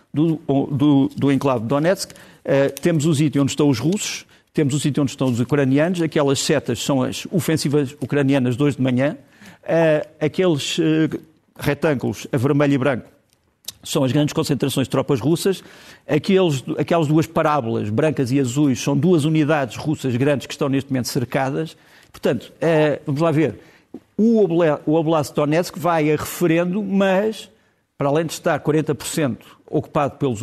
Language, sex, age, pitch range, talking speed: Portuguese, male, 50-69, 135-170 Hz, 165 wpm